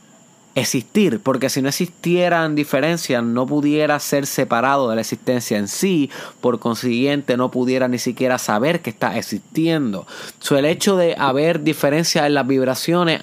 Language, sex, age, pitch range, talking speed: Spanish, male, 30-49, 120-155 Hz, 155 wpm